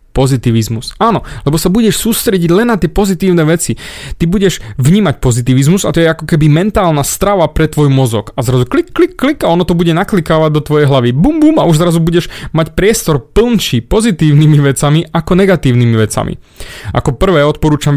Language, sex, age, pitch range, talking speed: Slovak, male, 30-49, 130-170 Hz, 185 wpm